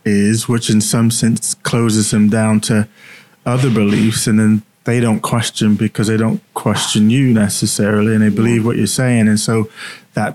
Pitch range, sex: 110-125 Hz, male